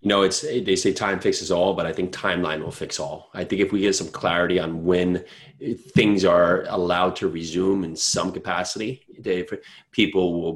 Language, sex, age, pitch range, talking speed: English, male, 30-49, 90-120 Hz, 200 wpm